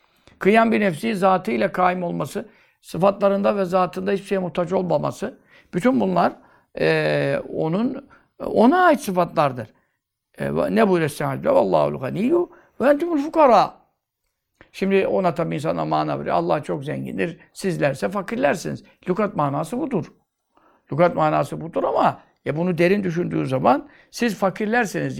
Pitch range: 165-210 Hz